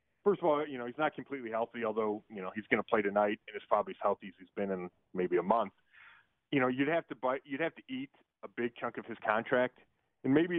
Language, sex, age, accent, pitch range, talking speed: English, male, 30-49, American, 115-150 Hz, 260 wpm